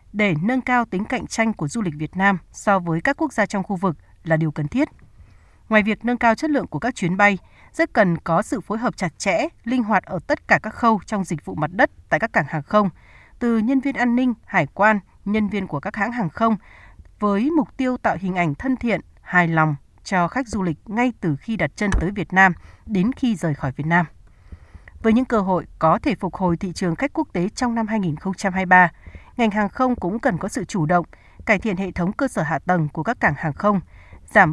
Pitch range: 170-230 Hz